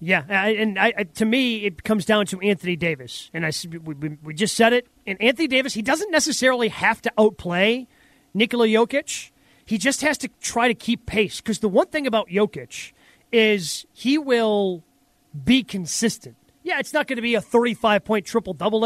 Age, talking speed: 30-49, 175 wpm